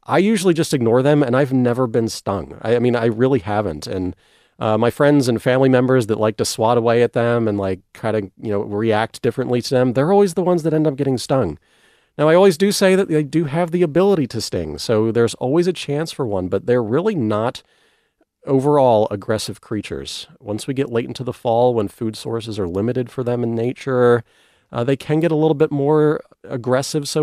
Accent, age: American, 40-59